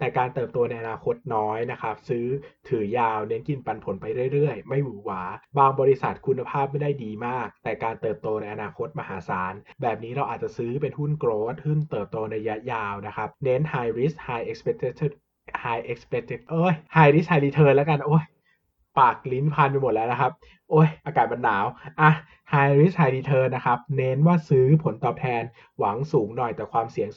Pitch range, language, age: 125-155 Hz, Thai, 20-39